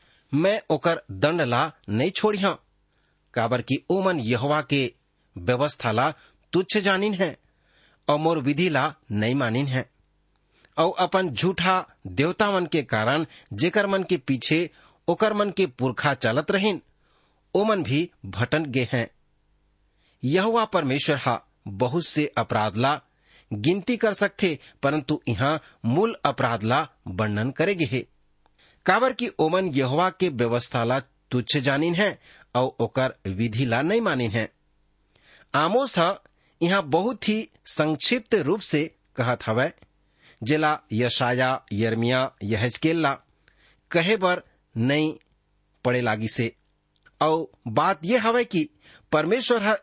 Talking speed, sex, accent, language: 115 wpm, male, Indian, English